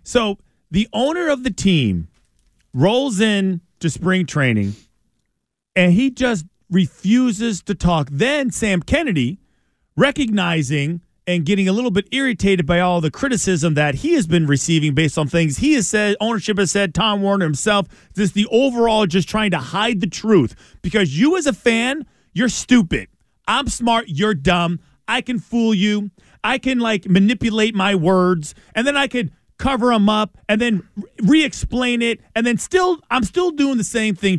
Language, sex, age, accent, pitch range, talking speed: English, male, 40-59, American, 180-240 Hz, 175 wpm